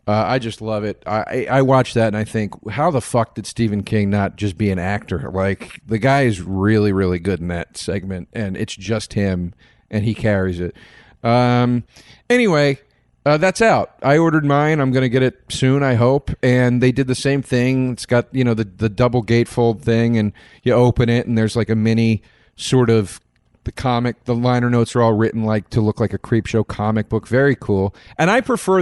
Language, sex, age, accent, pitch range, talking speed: English, male, 40-59, American, 100-130 Hz, 220 wpm